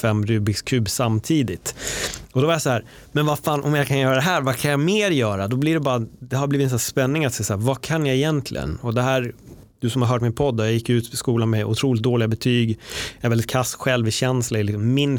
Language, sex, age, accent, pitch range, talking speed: Swedish, male, 30-49, native, 115-135 Hz, 275 wpm